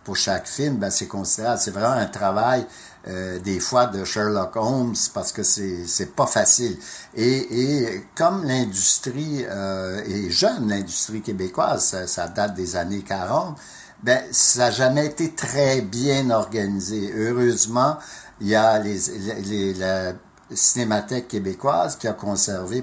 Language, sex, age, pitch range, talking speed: French, male, 60-79, 95-125 Hz, 150 wpm